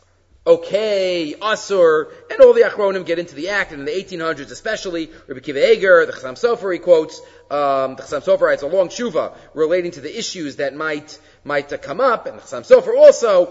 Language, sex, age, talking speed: English, male, 30-49, 205 wpm